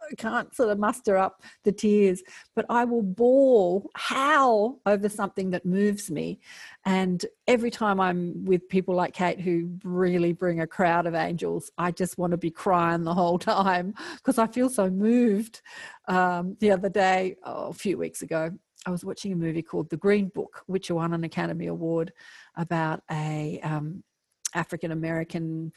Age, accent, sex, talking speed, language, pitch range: 40-59, Australian, female, 170 wpm, English, 165-205 Hz